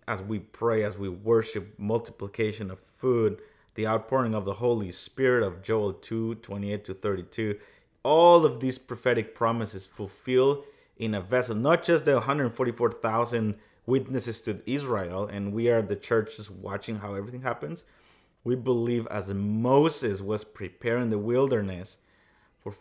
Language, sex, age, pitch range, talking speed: English, male, 30-49, 105-125 Hz, 140 wpm